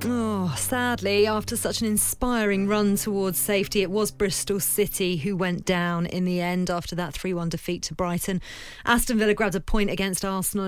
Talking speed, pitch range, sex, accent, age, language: 180 wpm, 180-210 Hz, female, British, 30-49, English